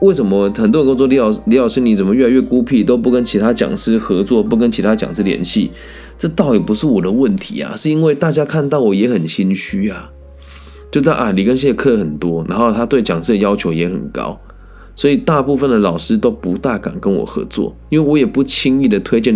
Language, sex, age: Chinese, male, 20-39